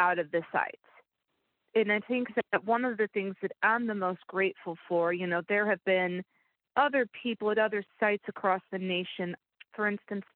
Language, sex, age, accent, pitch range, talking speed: English, female, 40-59, American, 190-240 Hz, 190 wpm